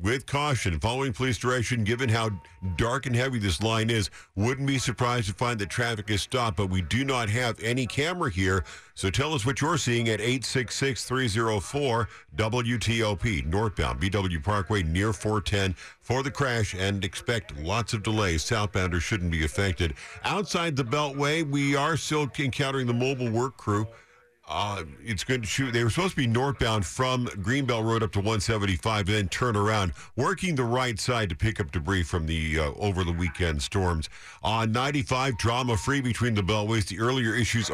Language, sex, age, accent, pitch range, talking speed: English, male, 50-69, American, 100-125 Hz, 175 wpm